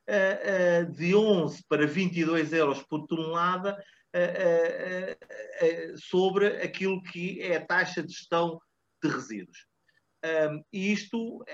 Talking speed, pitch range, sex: 100 wpm, 155-195 Hz, male